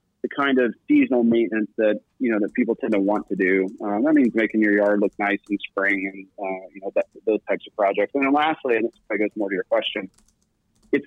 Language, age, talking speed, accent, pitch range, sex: English, 30-49, 255 wpm, American, 100-130 Hz, male